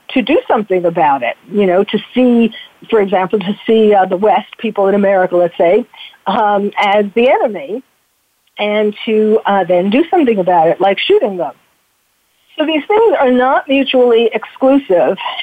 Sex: female